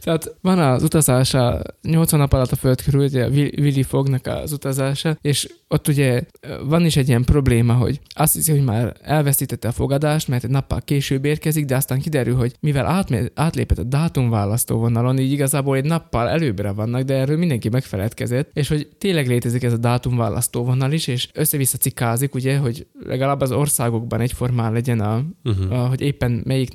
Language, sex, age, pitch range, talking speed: Hungarian, male, 20-39, 120-155 Hz, 175 wpm